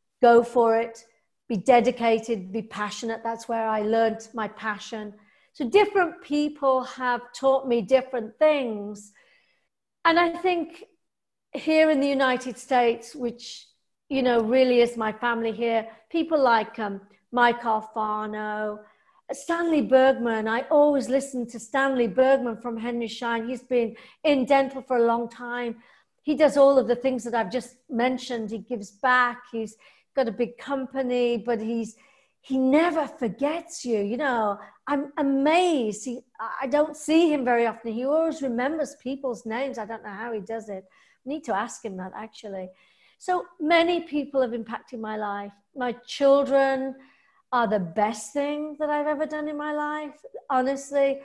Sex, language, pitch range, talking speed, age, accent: female, English, 225-275 Hz, 160 wpm, 50-69, British